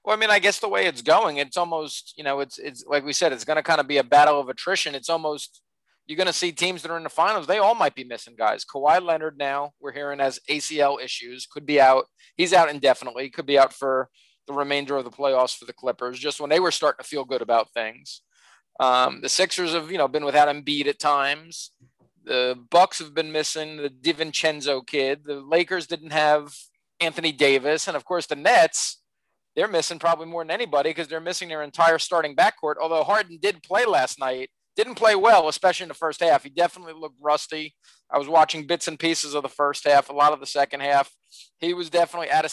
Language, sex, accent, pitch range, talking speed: English, male, American, 140-175 Hz, 230 wpm